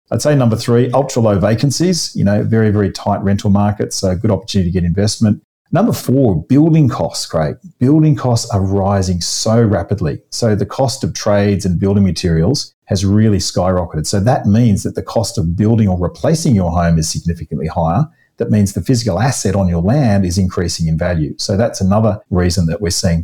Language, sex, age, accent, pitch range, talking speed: English, male, 40-59, Australian, 90-110 Hz, 200 wpm